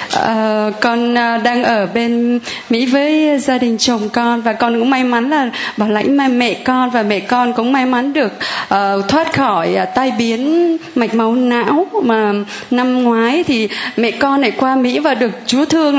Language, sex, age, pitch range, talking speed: Vietnamese, female, 20-39, 230-290 Hz, 190 wpm